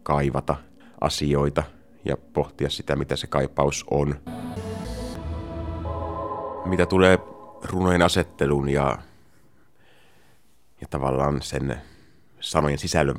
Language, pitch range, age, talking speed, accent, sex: Finnish, 70-95 Hz, 30-49, 85 wpm, native, male